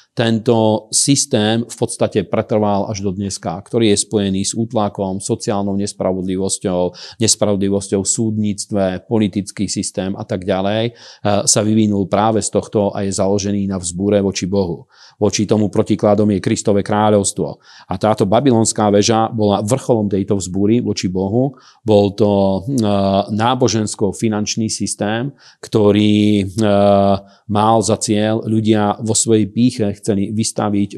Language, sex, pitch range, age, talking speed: Slovak, male, 100-110 Hz, 40-59, 125 wpm